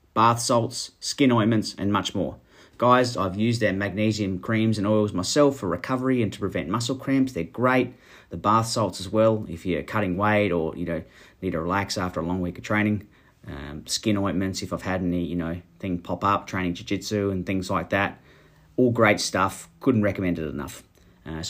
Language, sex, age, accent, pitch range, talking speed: English, male, 30-49, Australian, 95-120 Hz, 200 wpm